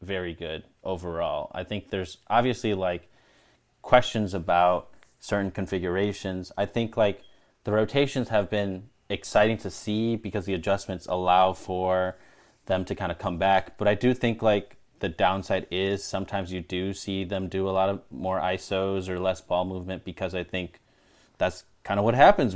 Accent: American